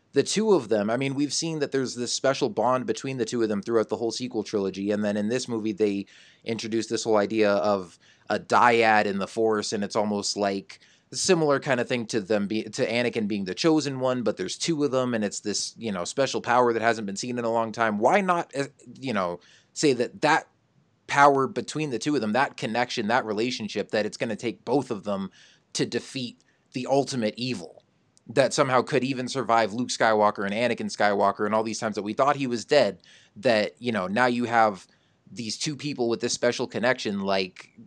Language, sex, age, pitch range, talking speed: English, male, 20-39, 105-140 Hz, 225 wpm